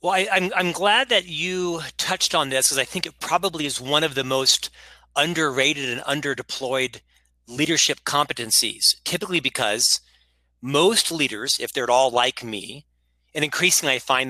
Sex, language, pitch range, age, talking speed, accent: male, English, 130-175 Hz, 40-59, 165 wpm, American